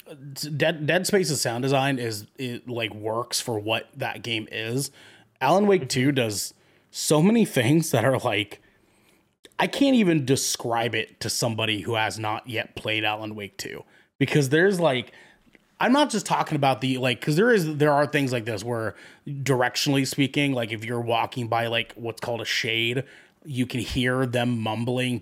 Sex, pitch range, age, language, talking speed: male, 115-150 Hz, 20-39, English, 180 wpm